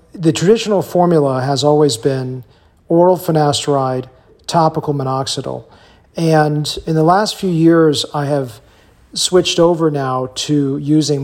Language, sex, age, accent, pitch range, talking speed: English, male, 40-59, American, 130-160 Hz, 125 wpm